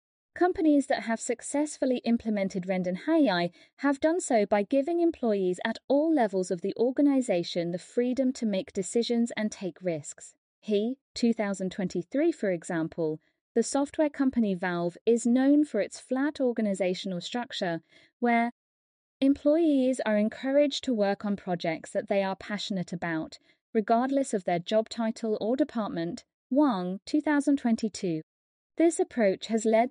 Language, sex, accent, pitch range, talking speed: English, female, British, 185-265 Hz, 135 wpm